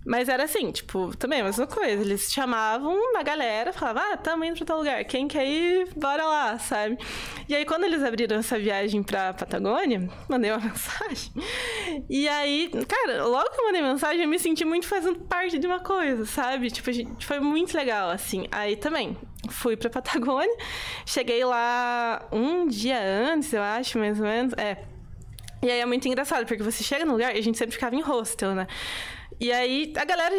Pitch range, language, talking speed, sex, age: 235-340 Hz, Portuguese, 195 wpm, female, 20-39